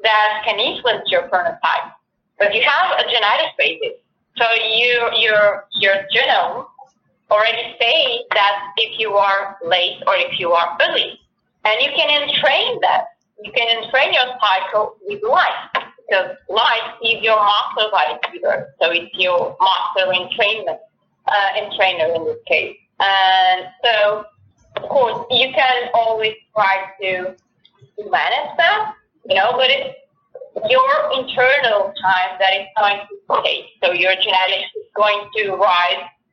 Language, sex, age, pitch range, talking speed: English, female, 30-49, 190-270 Hz, 145 wpm